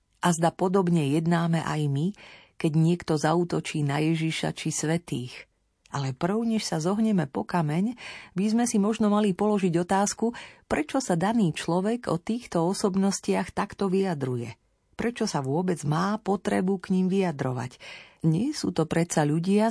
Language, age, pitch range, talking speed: Slovak, 40-59, 160-205 Hz, 145 wpm